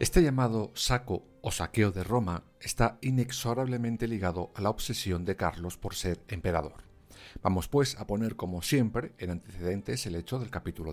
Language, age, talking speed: Spanish, 50-69, 165 wpm